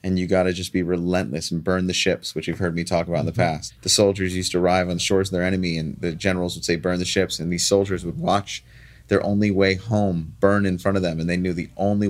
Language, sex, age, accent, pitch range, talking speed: English, male, 30-49, American, 85-105 Hz, 285 wpm